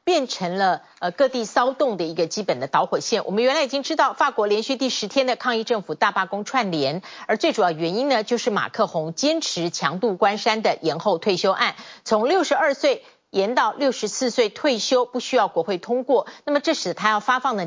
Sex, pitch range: female, 180-265 Hz